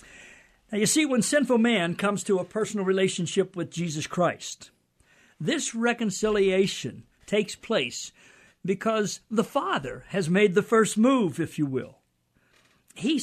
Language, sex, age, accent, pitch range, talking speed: English, male, 60-79, American, 155-230 Hz, 135 wpm